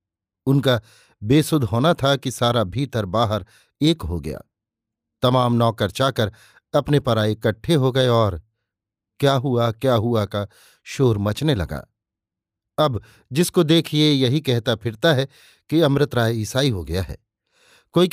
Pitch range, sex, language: 110-145 Hz, male, Hindi